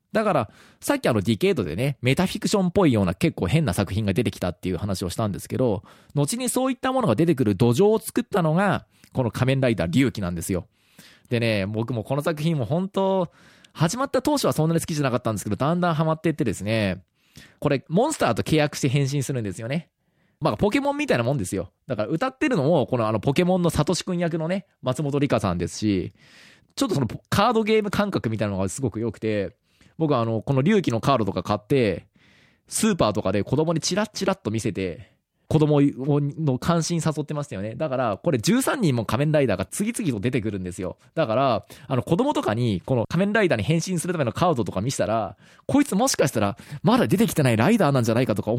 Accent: native